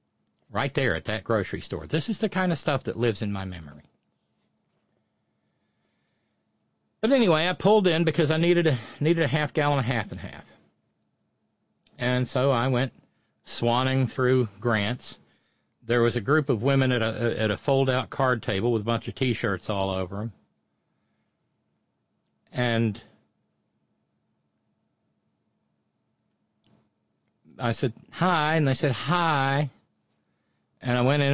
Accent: American